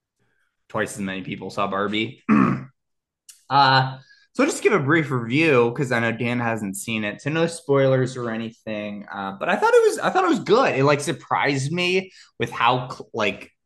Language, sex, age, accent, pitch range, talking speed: English, male, 20-39, American, 100-145 Hz, 200 wpm